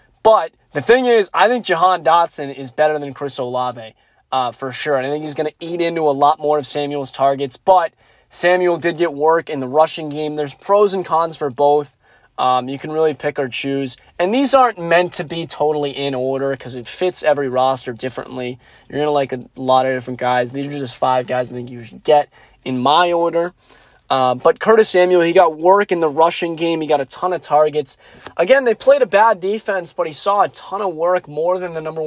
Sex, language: male, English